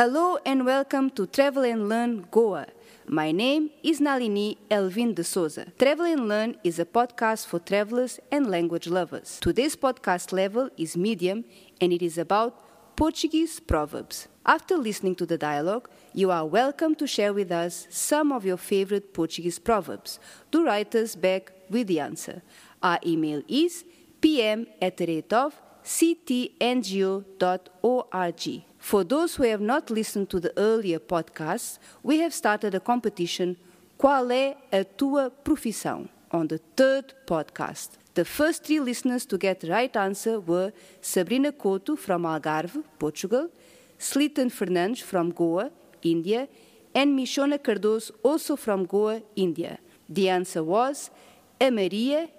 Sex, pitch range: female, 185-265 Hz